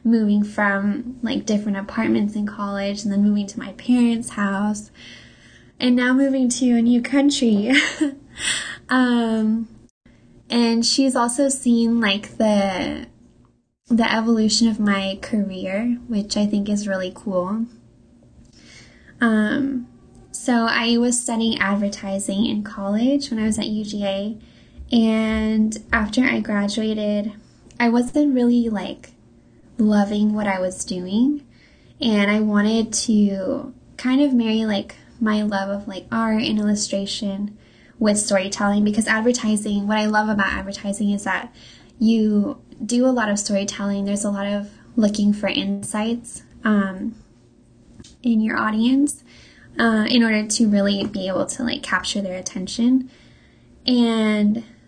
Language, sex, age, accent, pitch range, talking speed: English, female, 10-29, American, 205-240 Hz, 130 wpm